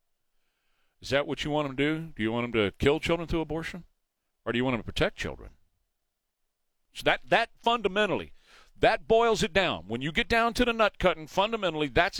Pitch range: 140-200 Hz